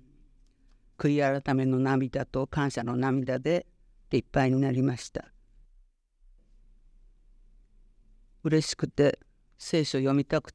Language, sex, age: Japanese, female, 50-69